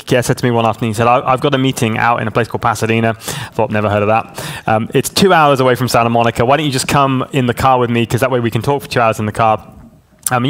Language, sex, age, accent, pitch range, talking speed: English, male, 20-39, British, 115-130 Hz, 315 wpm